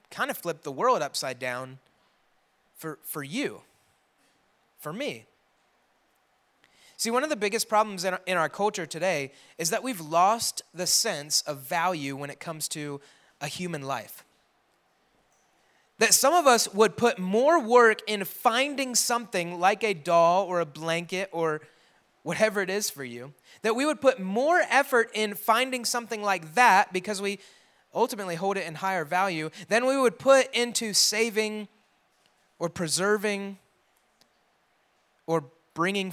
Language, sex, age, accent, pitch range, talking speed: English, male, 30-49, American, 160-220 Hz, 150 wpm